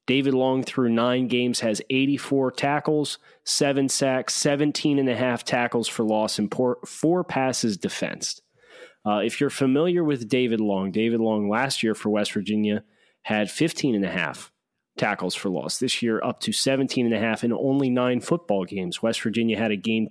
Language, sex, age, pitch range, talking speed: English, male, 30-49, 105-135 Hz, 155 wpm